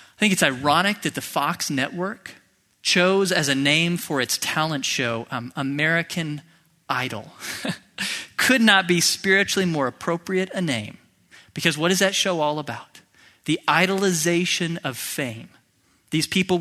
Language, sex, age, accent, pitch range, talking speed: English, male, 40-59, American, 140-185 Hz, 145 wpm